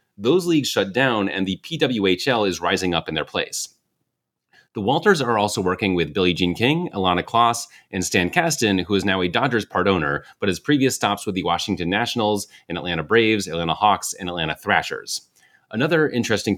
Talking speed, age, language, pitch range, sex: 190 wpm, 30-49, English, 90-135 Hz, male